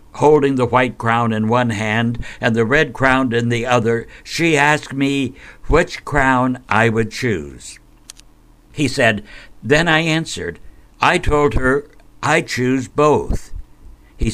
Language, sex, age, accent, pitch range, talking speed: English, male, 60-79, American, 105-130 Hz, 140 wpm